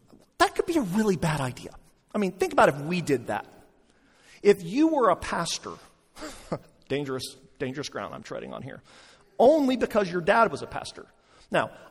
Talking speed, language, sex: 175 wpm, English, male